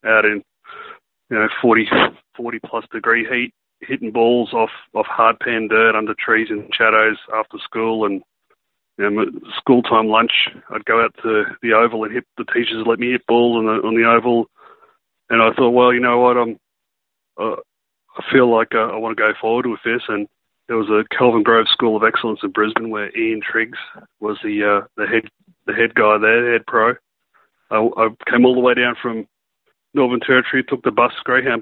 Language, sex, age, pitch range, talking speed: English, male, 30-49, 110-120 Hz, 205 wpm